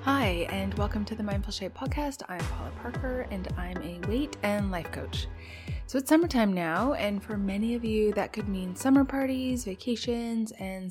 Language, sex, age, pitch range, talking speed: English, female, 20-39, 170-225 Hz, 185 wpm